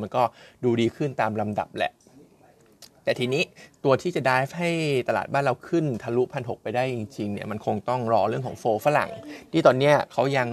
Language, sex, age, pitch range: Thai, male, 20-39, 115-145 Hz